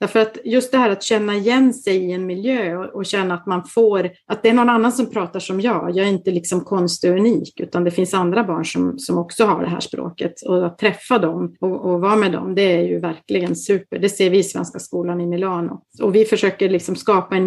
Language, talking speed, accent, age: Swedish, 250 wpm, native, 30-49